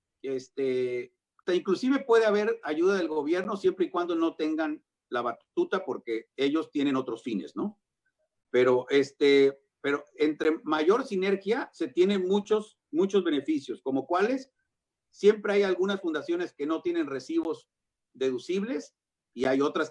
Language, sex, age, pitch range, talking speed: Spanish, male, 50-69, 135-220 Hz, 135 wpm